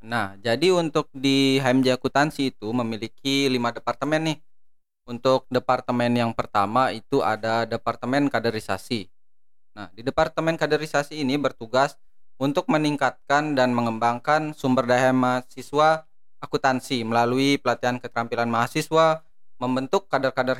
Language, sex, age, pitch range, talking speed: Indonesian, male, 20-39, 115-145 Hz, 115 wpm